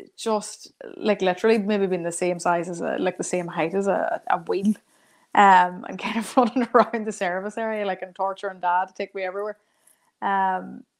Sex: female